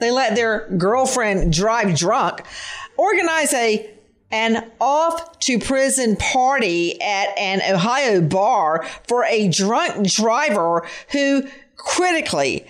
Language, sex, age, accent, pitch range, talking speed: English, female, 50-69, American, 180-265 Hz, 95 wpm